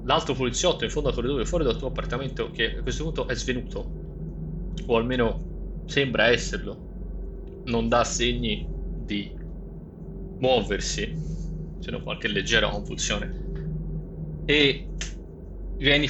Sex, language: male, Italian